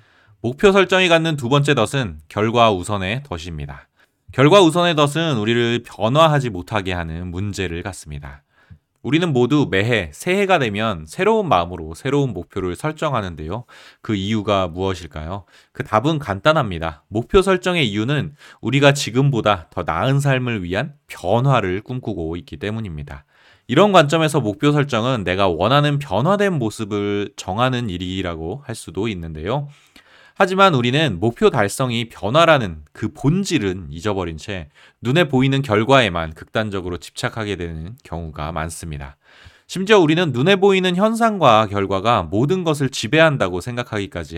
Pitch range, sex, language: 90-145 Hz, male, Korean